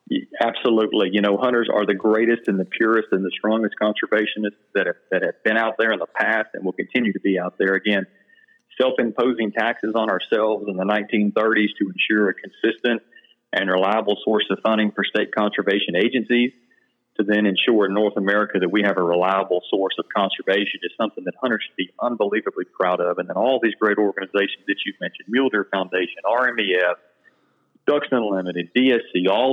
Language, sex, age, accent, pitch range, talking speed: English, male, 40-59, American, 100-120 Hz, 185 wpm